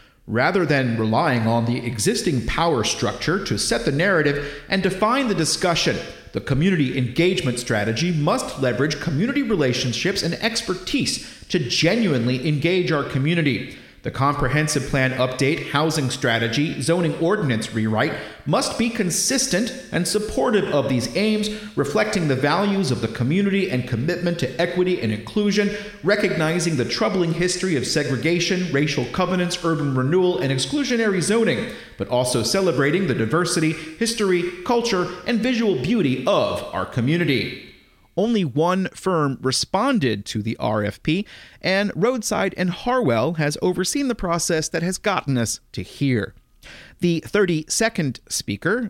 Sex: male